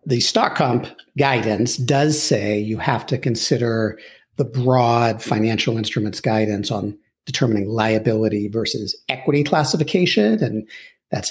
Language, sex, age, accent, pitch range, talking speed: English, male, 50-69, American, 110-140 Hz, 120 wpm